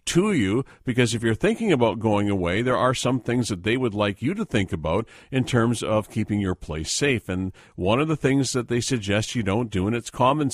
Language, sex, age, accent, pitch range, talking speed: English, male, 50-69, American, 95-135 Hz, 240 wpm